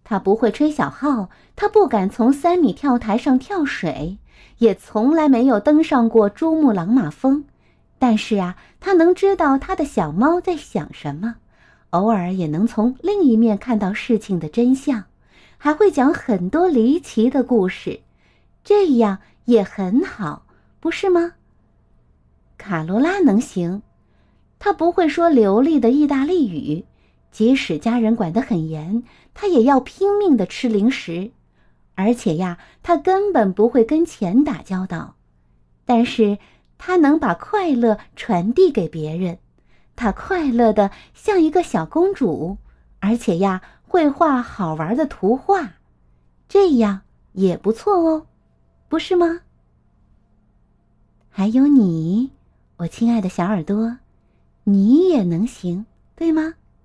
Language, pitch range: Chinese, 200-310 Hz